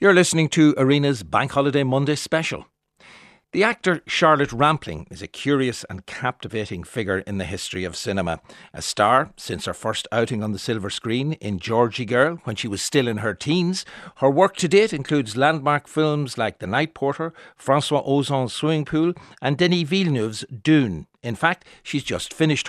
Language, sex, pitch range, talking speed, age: English, male, 115-155 Hz, 175 wpm, 60-79